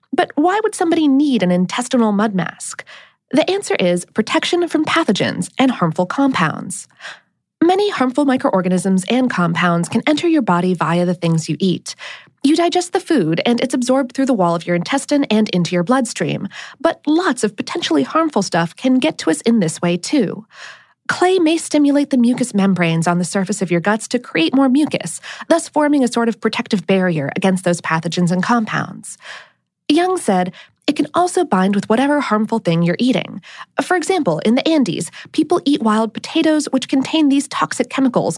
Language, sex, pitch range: English, female, 185-305 Hz